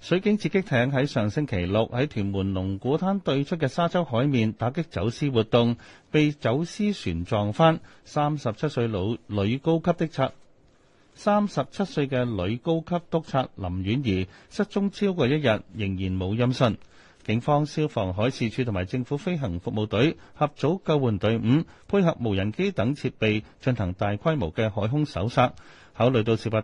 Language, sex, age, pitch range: Chinese, male, 30-49, 105-150 Hz